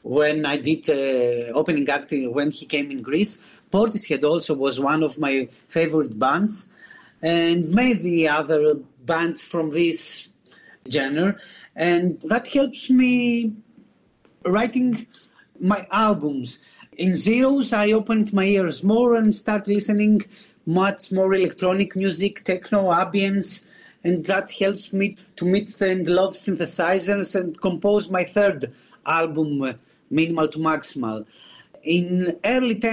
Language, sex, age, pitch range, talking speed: English, male, 40-59, 165-210 Hz, 125 wpm